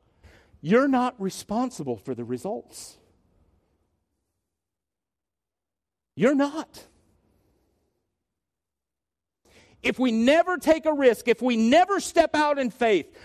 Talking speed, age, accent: 95 wpm, 50-69, American